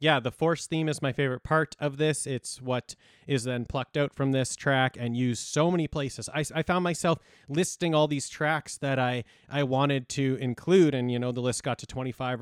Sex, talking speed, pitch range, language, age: male, 220 wpm, 125-150 Hz, English, 30-49